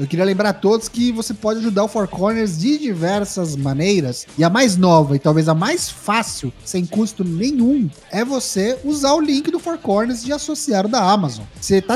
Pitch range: 155-215 Hz